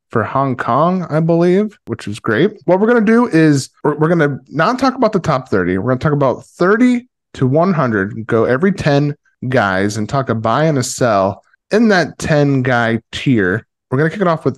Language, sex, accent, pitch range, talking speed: English, male, American, 110-155 Hz, 205 wpm